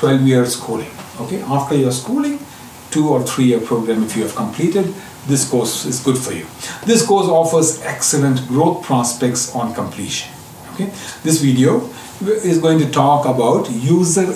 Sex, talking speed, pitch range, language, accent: male, 165 wpm, 120-165 Hz, English, Indian